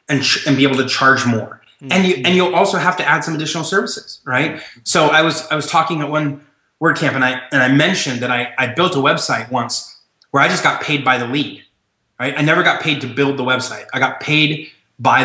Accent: American